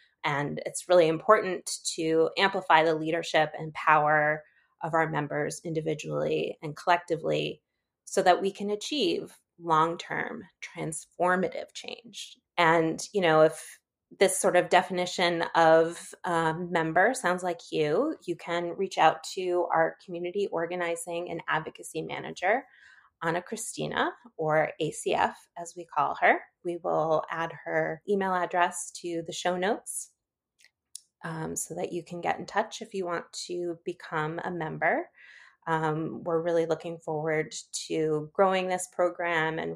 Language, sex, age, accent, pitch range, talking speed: English, female, 20-39, American, 160-185 Hz, 140 wpm